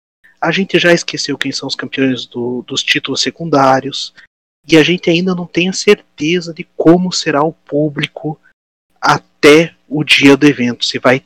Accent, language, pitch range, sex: Brazilian, Portuguese, 125-150 Hz, male